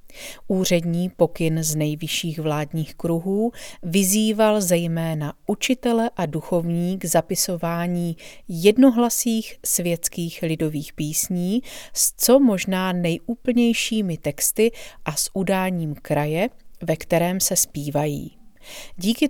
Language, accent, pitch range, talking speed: Czech, native, 160-205 Hz, 95 wpm